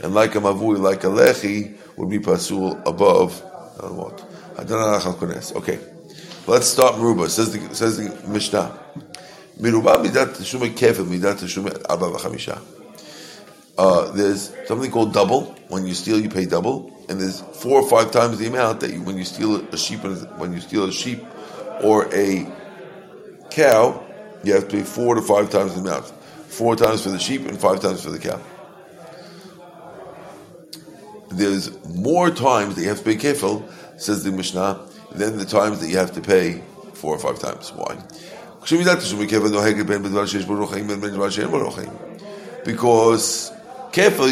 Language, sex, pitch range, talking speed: English, male, 100-130 Hz, 150 wpm